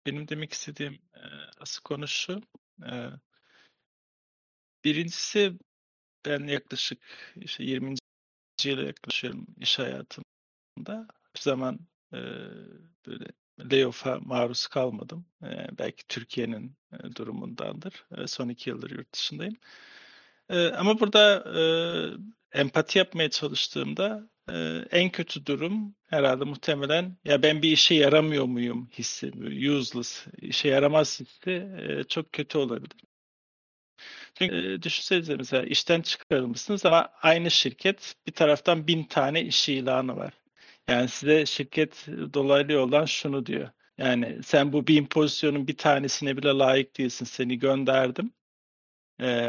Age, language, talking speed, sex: 40-59, Turkish, 110 wpm, male